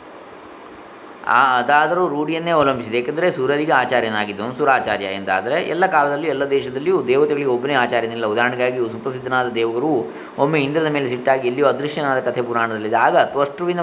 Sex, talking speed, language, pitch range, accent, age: male, 120 wpm, Kannada, 120-155 Hz, native, 20-39